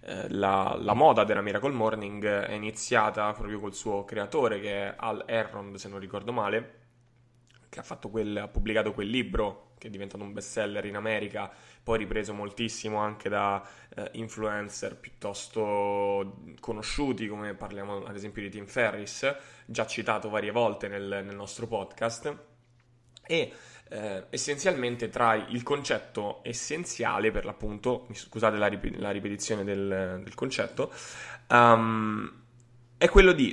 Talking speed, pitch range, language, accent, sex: 145 wpm, 100-120 Hz, Italian, native, male